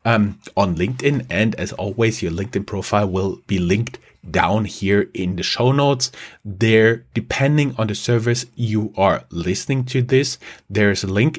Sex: male